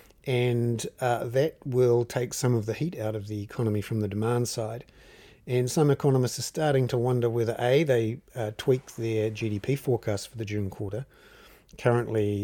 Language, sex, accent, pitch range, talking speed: English, male, Australian, 105-125 Hz, 180 wpm